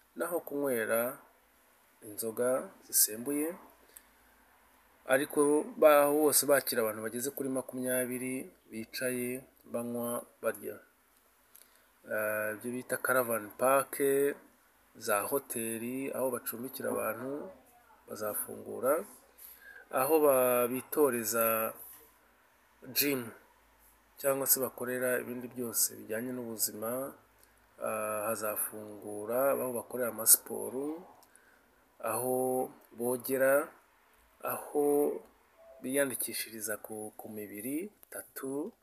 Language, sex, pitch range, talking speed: English, male, 115-140 Hz, 70 wpm